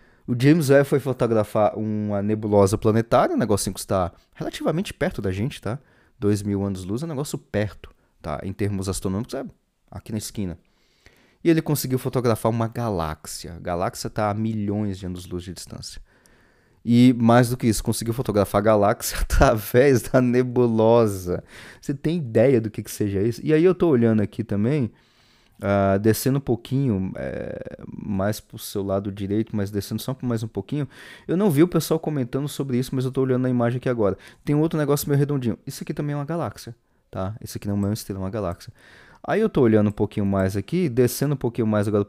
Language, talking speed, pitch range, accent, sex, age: Portuguese, 200 wpm, 100-130 Hz, Brazilian, male, 20-39